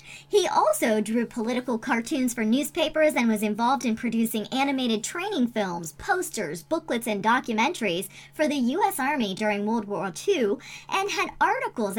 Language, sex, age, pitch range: English, male, 30-49, 210-300 Hz